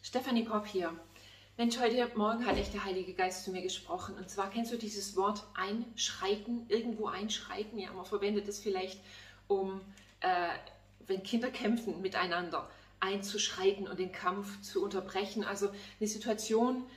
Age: 30-49